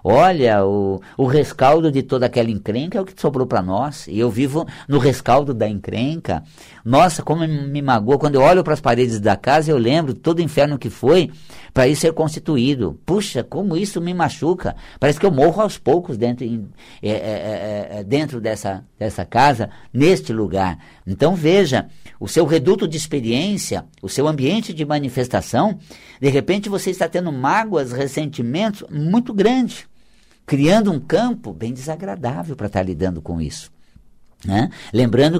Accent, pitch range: Brazilian, 110-160 Hz